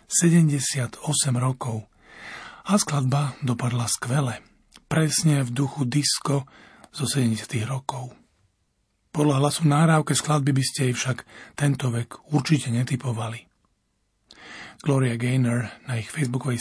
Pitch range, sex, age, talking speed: 120-150 Hz, male, 40-59, 105 wpm